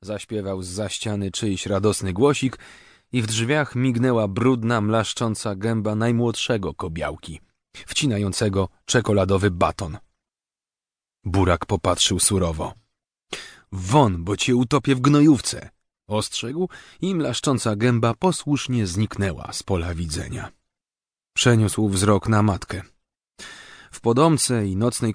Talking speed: 110 wpm